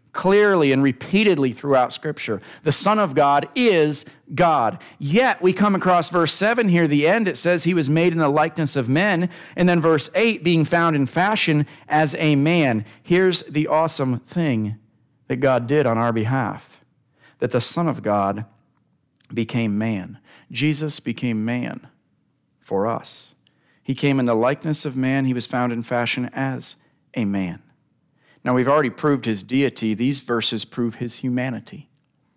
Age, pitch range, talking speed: 40-59, 130-175 Hz, 165 wpm